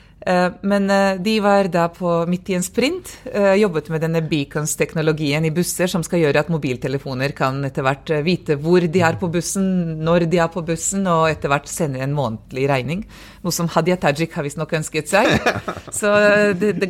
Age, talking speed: 30-49, 190 wpm